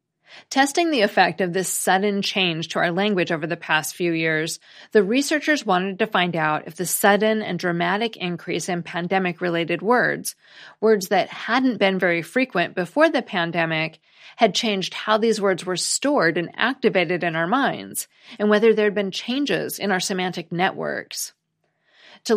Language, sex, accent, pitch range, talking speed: English, female, American, 175-225 Hz, 165 wpm